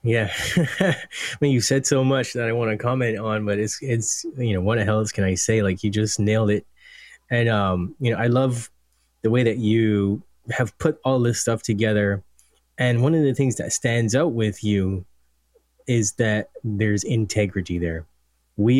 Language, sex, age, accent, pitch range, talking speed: English, male, 10-29, American, 100-140 Hz, 195 wpm